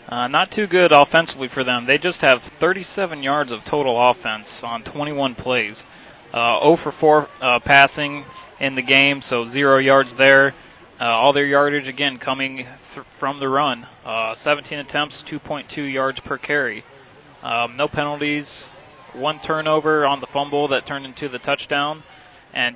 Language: English